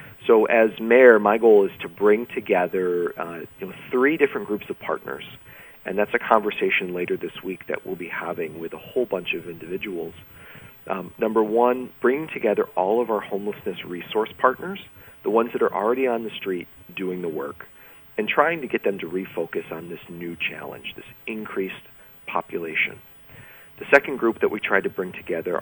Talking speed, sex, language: 185 wpm, male, English